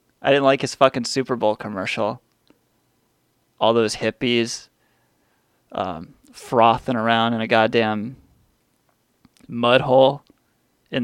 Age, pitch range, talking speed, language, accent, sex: 30-49, 120-155 Hz, 110 wpm, English, American, male